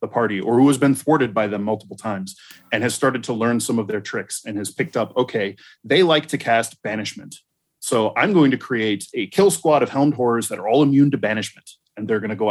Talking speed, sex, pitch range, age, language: 250 wpm, male, 110-145 Hz, 30-49, English